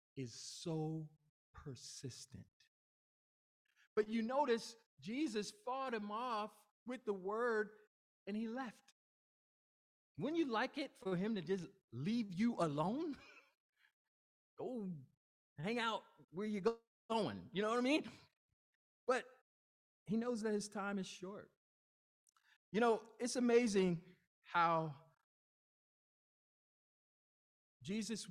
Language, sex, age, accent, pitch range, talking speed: English, male, 50-69, American, 190-290 Hz, 110 wpm